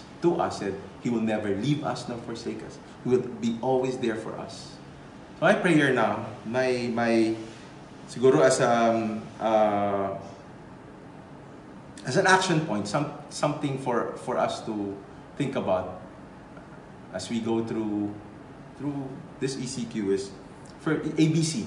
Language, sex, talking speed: English, male, 140 wpm